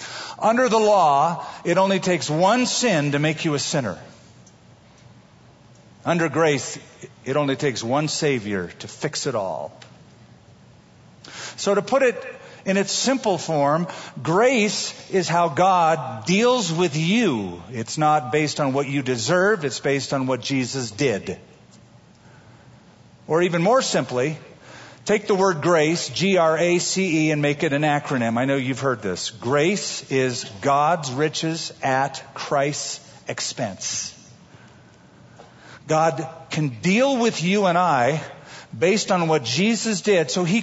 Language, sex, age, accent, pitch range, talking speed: English, male, 50-69, American, 140-190 Hz, 135 wpm